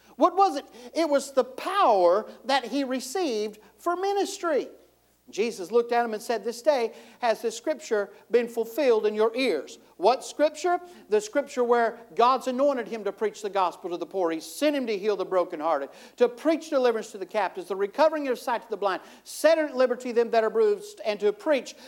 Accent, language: American, English